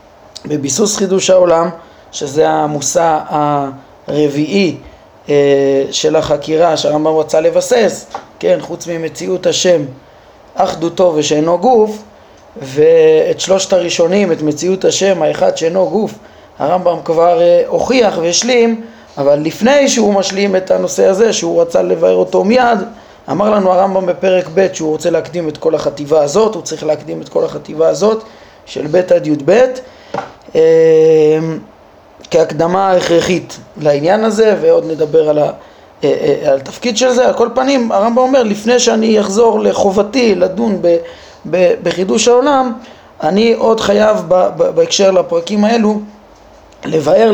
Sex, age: male, 20-39